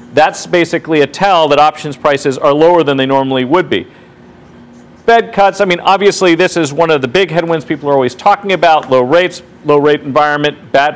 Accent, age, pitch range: American, 40-59, 140-175 Hz